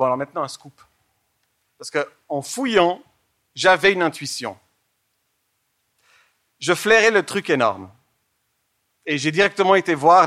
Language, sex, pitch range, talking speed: German, male, 130-180 Hz, 125 wpm